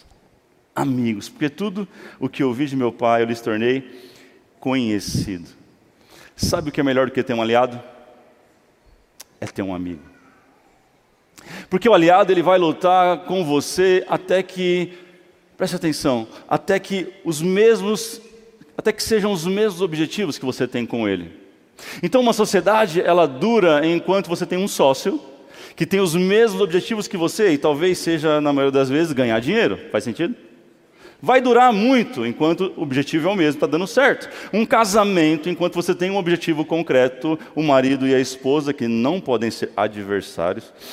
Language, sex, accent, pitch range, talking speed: Portuguese, male, Brazilian, 125-185 Hz, 165 wpm